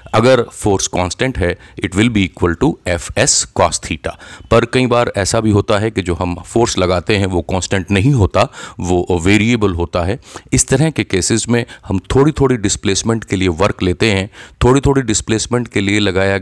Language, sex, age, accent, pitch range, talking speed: Hindi, male, 40-59, native, 90-115 Hz, 195 wpm